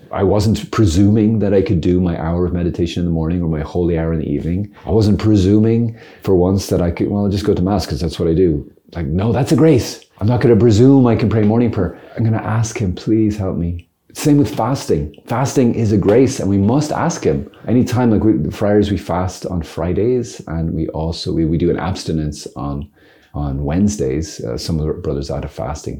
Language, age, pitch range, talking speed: English, 30-49, 80-110 Hz, 240 wpm